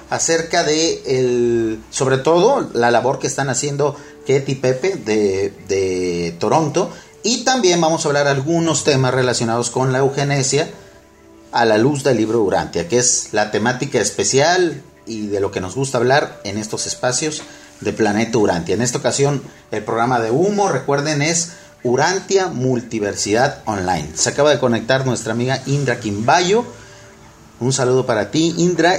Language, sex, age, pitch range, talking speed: Spanish, male, 40-59, 120-155 Hz, 155 wpm